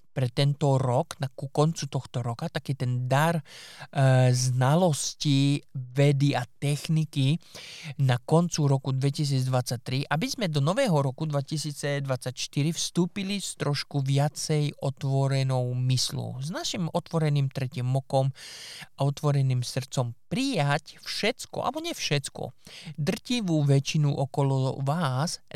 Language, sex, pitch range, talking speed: Slovak, male, 130-165 Hz, 115 wpm